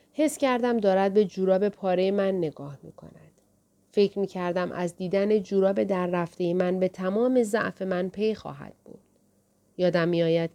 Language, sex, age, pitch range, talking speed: Persian, female, 30-49, 165-220 Hz, 155 wpm